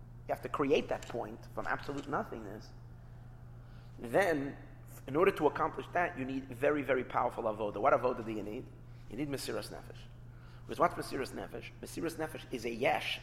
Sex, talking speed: male, 170 wpm